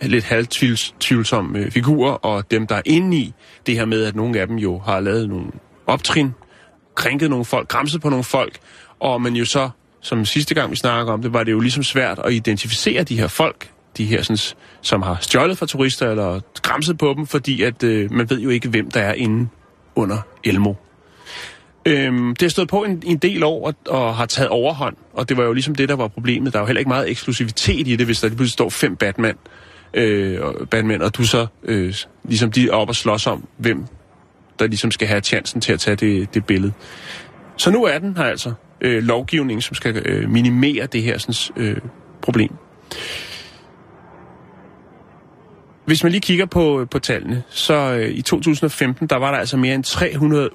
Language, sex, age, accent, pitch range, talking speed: Danish, male, 30-49, native, 110-140 Hz, 205 wpm